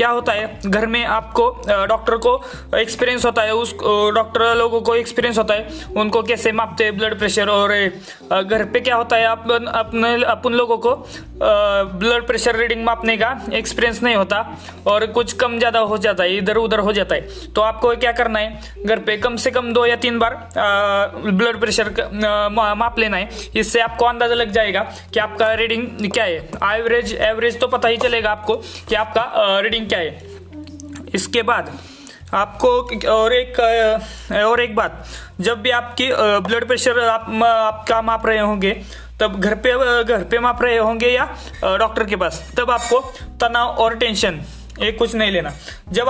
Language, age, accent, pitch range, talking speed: Hindi, 20-39, native, 215-240 Hz, 165 wpm